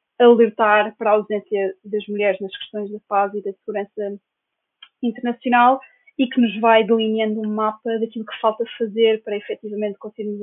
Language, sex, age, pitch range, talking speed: Portuguese, female, 20-39, 210-245 Hz, 160 wpm